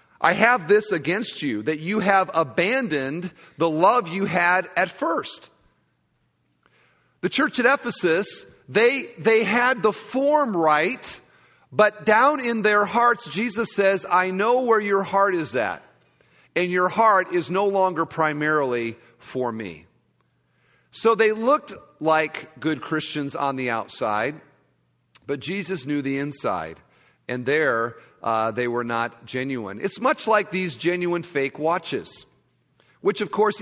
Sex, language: male, English